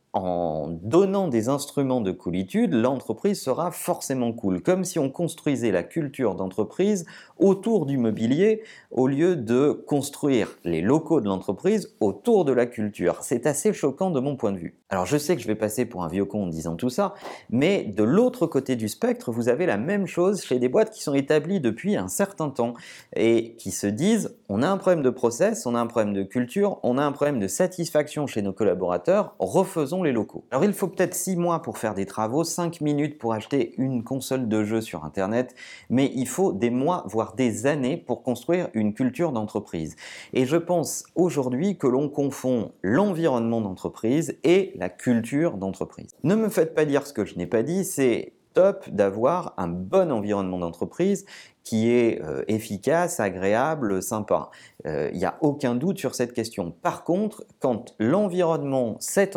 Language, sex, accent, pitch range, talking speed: French, male, French, 110-175 Hz, 190 wpm